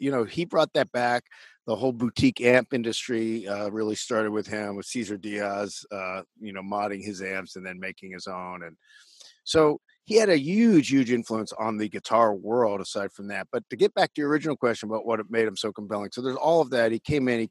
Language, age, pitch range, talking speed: English, 50-69, 100-125 Hz, 235 wpm